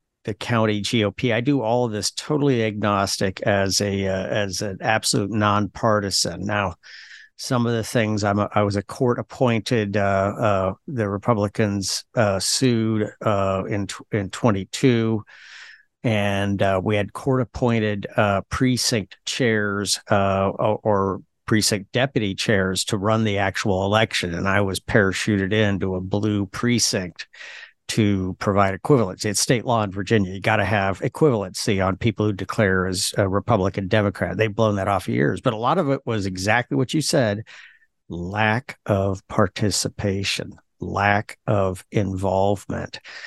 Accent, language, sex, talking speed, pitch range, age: American, English, male, 145 wpm, 95-115 Hz, 50-69